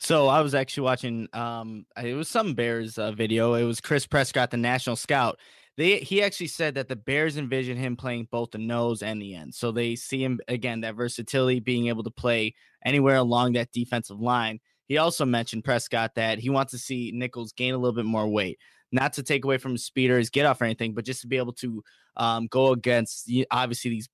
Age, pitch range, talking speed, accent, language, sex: 20-39, 115-135 Hz, 220 wpm, American, English, male